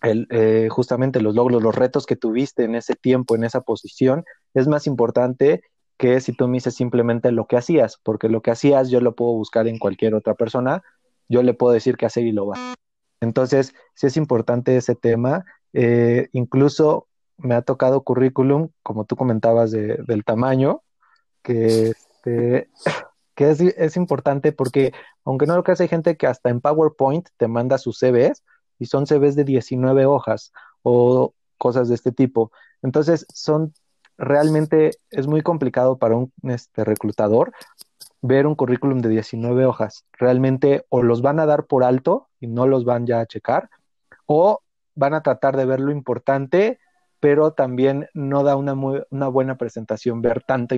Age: 20-39